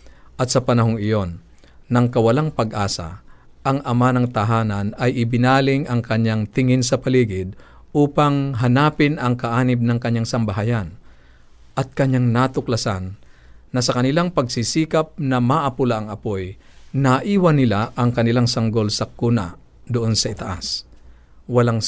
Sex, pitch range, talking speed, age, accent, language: male, 100-130 Hz, 130 wpm, 50-69, native, Filipino